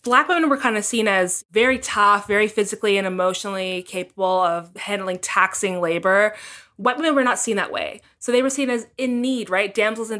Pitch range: 190-230 Hz